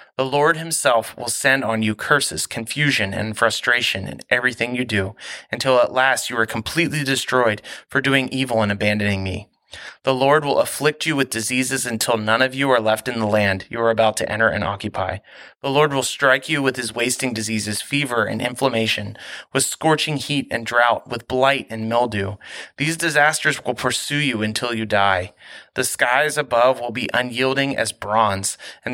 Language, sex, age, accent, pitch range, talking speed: English, male, 30-49, American, 110-135 Hz, 185 wpm